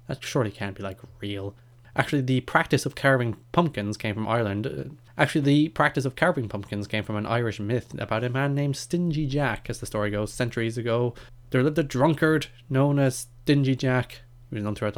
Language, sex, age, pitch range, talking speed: English, male, 20-39, 105-130 Hz, 200 wpm